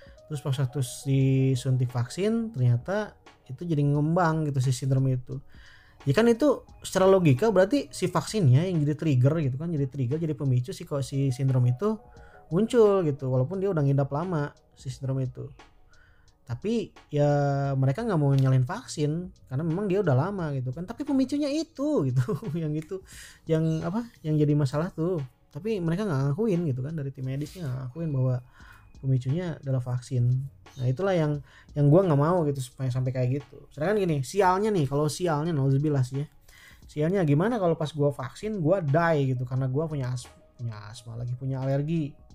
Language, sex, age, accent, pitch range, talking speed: Indonesian, male, 20-39, native, 130-165 Hz, 175 wpm